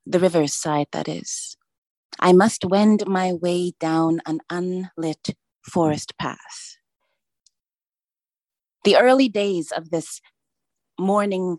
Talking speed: 105 wpm